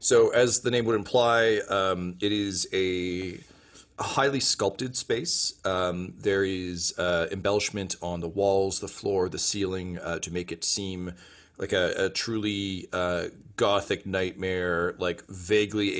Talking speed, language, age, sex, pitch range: 145 wpm, English, 30-49, male, 90-100 Hz